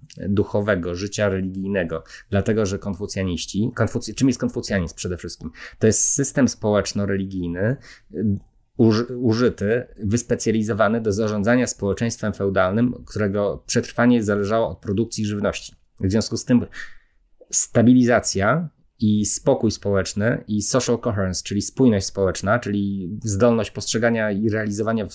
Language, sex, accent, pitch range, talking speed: Polish, male, native, 100-120 Hz, 110 wpm